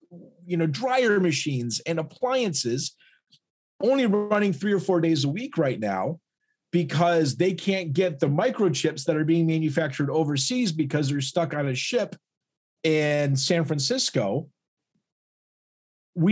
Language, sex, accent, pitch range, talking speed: English, male, American, 145-180 Hz, 135 wpm